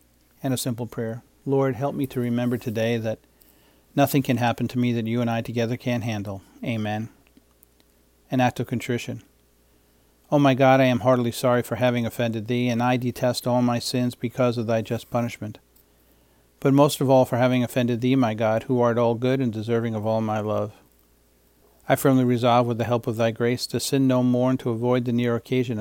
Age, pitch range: 50-69, 110-125 Hz